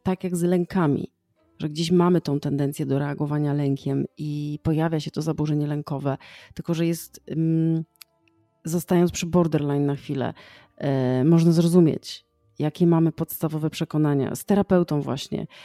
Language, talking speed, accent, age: Polish, 135 wpm, native, 30-49